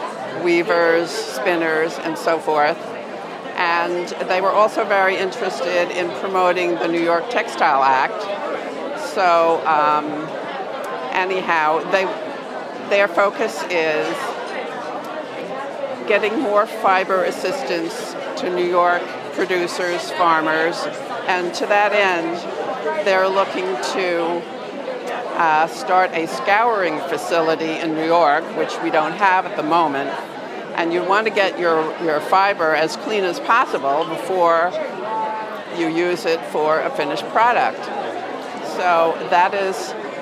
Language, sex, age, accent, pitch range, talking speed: English, female, 60-79, American, 165-190 Hz, 115 wpm